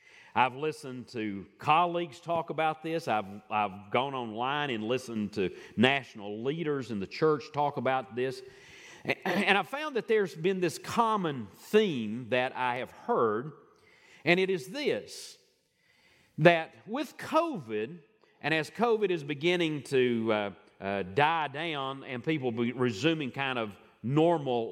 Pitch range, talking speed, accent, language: 125-200 Hz, 145 wpm, American, English